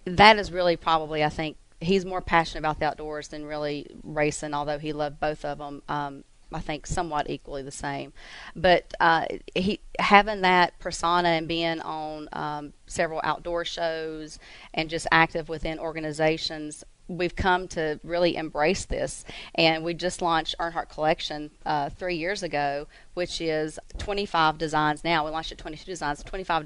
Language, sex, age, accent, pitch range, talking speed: English, female, 30-49, American, 155-175 Hz, 165 wpm